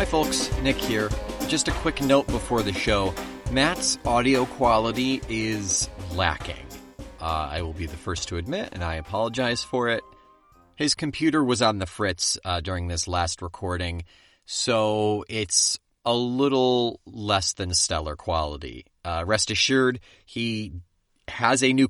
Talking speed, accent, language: 150 wpm, American, English